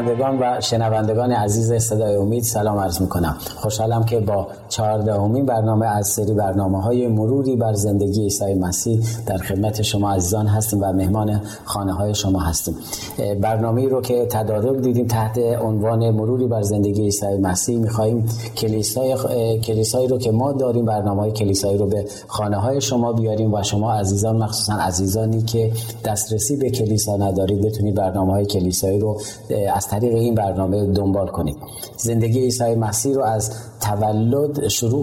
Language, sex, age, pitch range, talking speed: Persian, male, 30-49, 105-120 Hz, 150 wpm